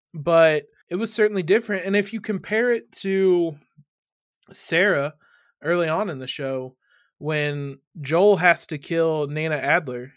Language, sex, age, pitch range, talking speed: English, male, 20-39, 145-175 Hz, 140 wpm